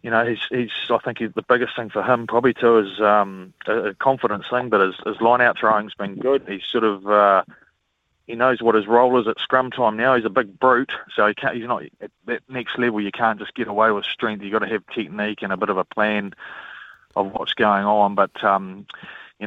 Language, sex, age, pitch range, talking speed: English, male, 30-49, 100-120 Hz, 245 wpm